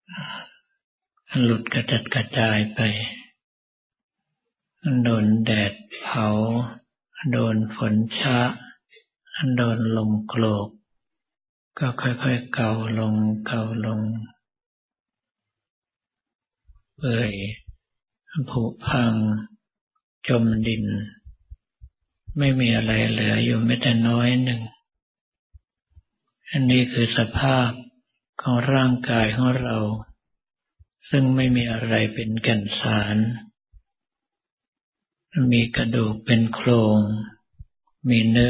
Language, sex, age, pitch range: Thai, male, 50-69, 110-125 Hz